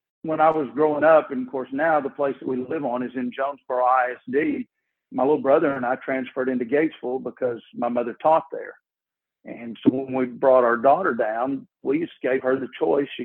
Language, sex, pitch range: English, male, 125-155 Hz